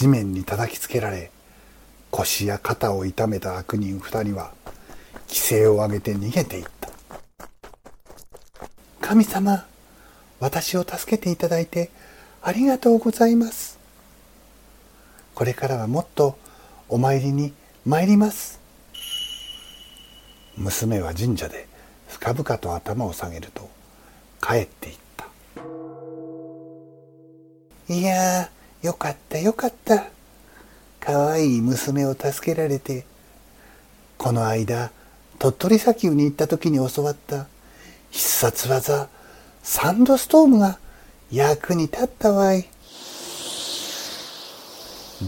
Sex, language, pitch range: male, Japanese, 120-175 Hz